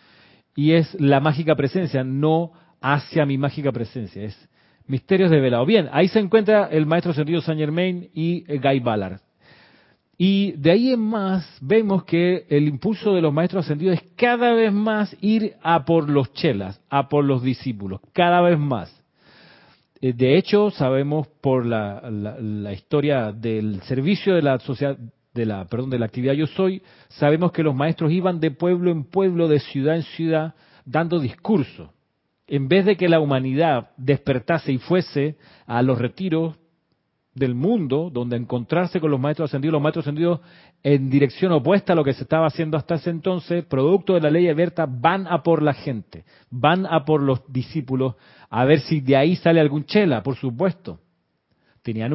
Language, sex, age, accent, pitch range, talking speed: Spanish, male, 40-59, Argentinian, 130-175 Hz, 175 wpm